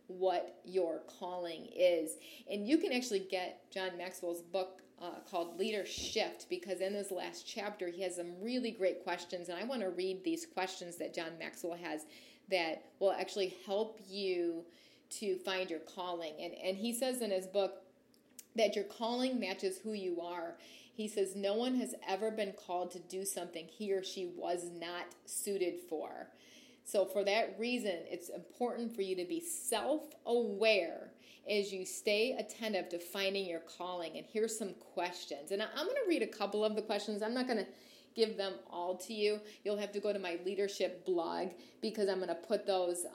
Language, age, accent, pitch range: English, 40-59, American, 180-215 Hz